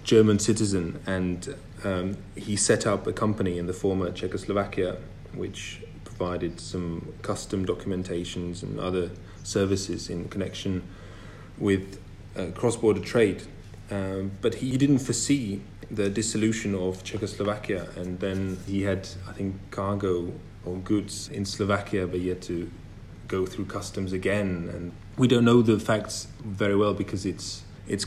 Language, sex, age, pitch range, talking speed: English, male, 30-49, 95-110 Hz, 140 wpm